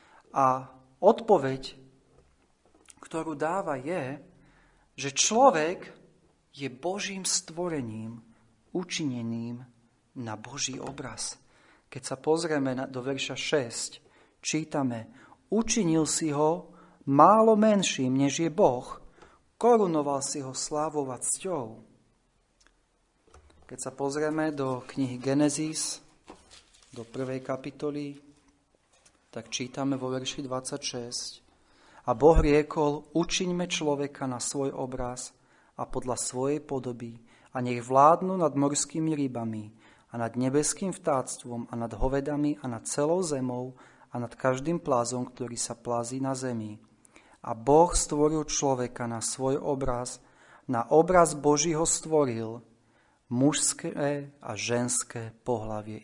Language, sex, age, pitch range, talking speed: Slovak, male, 40-59, 125-155 Hz, 105 wpm